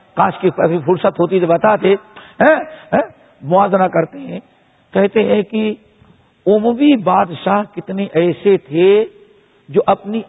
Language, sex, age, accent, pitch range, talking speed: English, male, 60-79, Indian, 175-215 Hz, 120 wpm